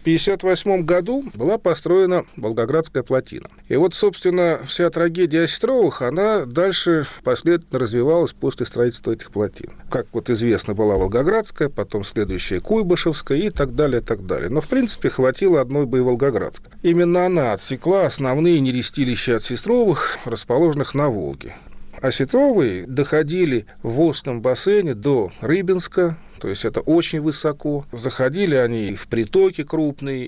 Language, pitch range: Russian, 125-175 Hz